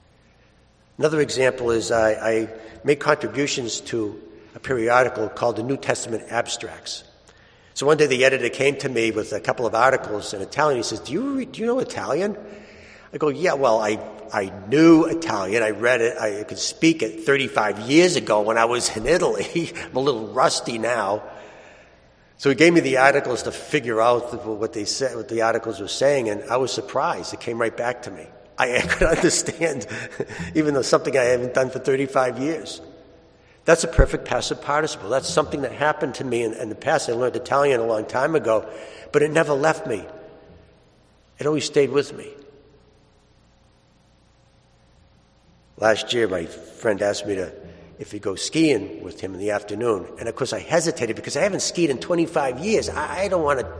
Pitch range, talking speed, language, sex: 110-150 Hz, 190 wpm, English, male